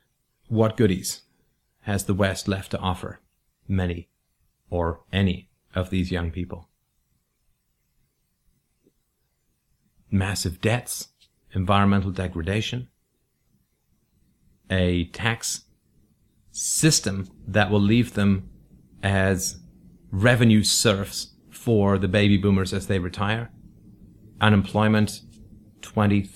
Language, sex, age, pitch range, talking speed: English, male, 30-49, 90-105 Hz, 85 wpm